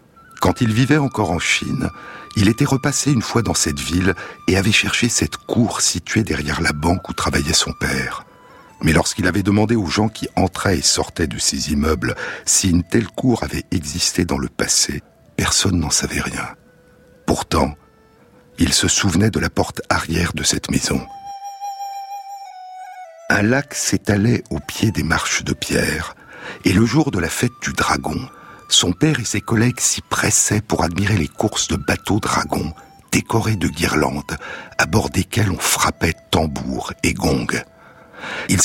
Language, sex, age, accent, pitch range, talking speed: French, male, 60-79, French, 85-125 Hz, 165 wpm